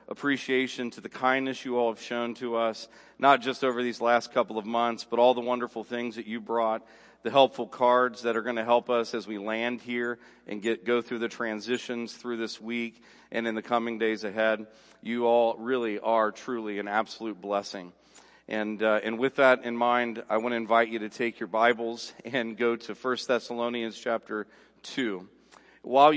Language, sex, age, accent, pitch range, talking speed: English, male, 40-59, American, 110-125 Hz, 195 wpm